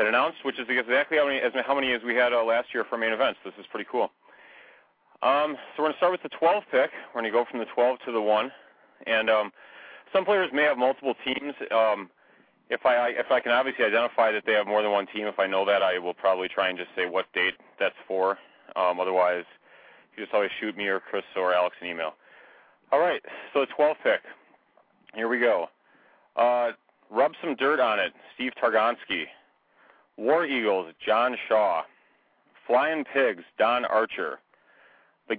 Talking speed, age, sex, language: 205 wpm, 30-49, male, English